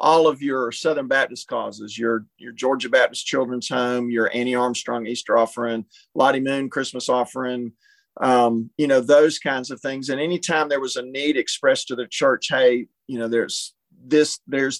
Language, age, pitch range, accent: English, 40-59, 125-155 Hz, American